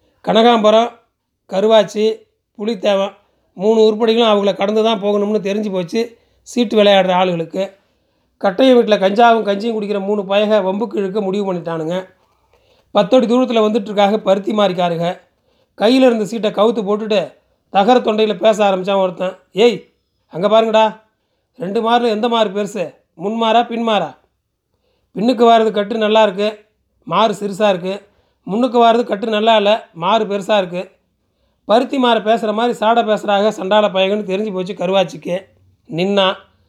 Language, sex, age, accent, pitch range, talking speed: Tamil, male, 40-59, native, 195-225 Hz, 130 wpm